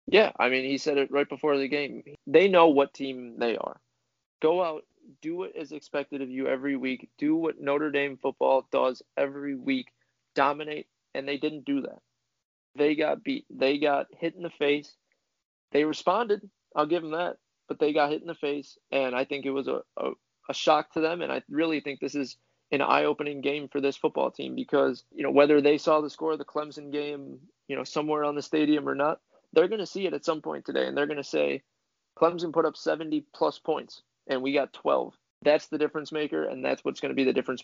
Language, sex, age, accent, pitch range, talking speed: English, male, 20-39, American, 135-155 Hz, 225 wpm